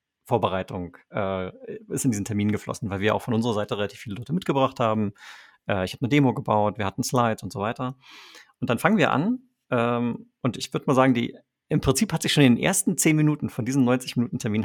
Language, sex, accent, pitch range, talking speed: German, male, German, 115-145 Hz, 225 wpm